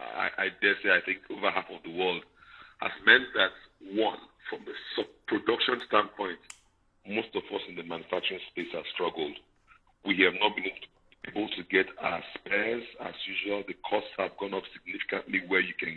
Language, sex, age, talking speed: English, male, 50-69, 180 wpm